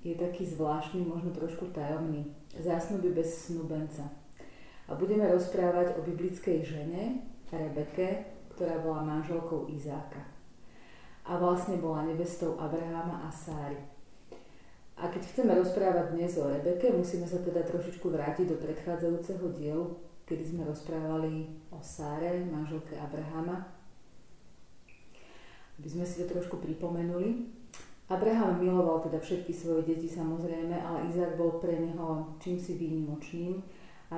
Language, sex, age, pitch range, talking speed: Slovak, female, 30-49, 160-180 Hz, 125 wpm